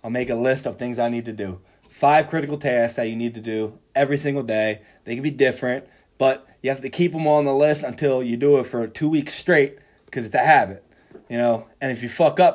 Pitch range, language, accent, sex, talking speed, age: 120-145 Hz, English, American, male, 260 wpm, 20-39